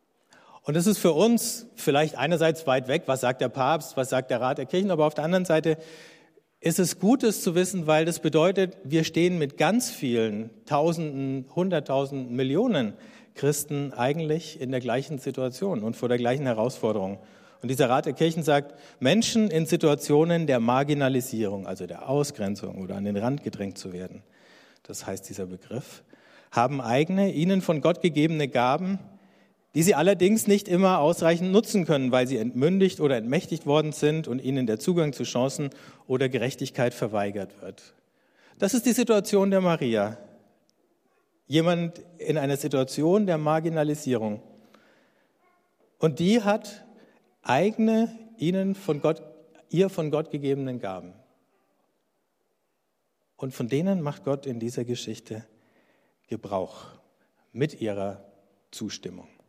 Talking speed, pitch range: 145 wpm, 130-180 Hz